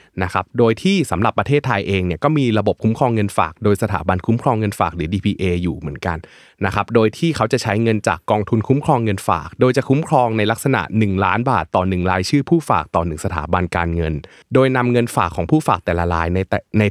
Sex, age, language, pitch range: male, 20-39, Thai, 95-120 Hz